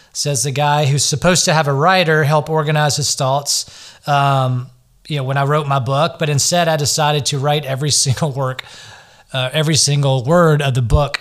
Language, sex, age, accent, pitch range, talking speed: English, male, 30-49, American, 135-170 Hz, 200 wpm